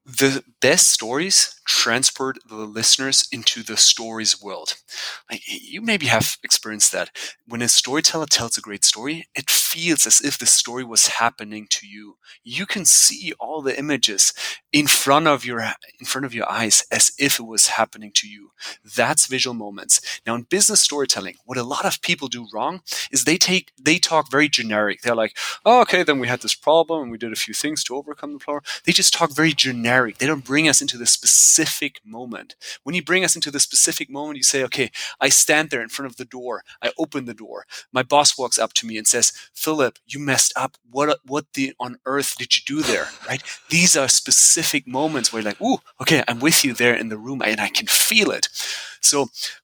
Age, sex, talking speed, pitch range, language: 30-49, male, 210 wpm, 115-150 Hz, English